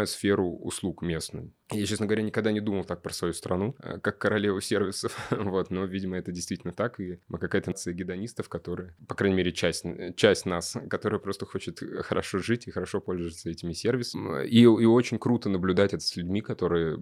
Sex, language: male, Russian